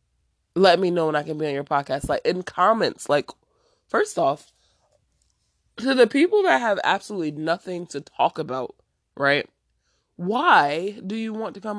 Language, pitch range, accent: English, 145-205 Hz, American